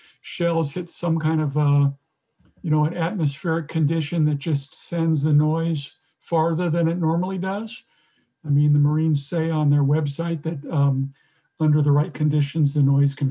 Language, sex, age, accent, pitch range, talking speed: English, male, 50-69, American, 140-160 Hz, 170 wpm